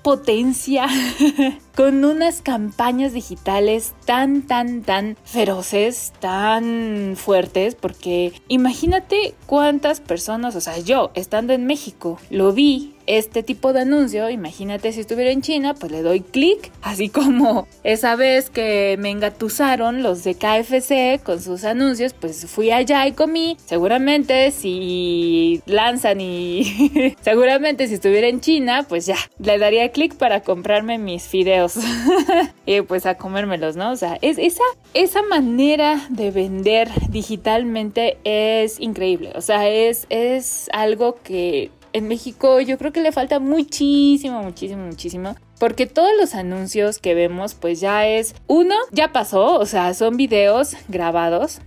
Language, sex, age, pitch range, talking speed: Spanish, female, 20-39, 195-270 Hz, 140 wpm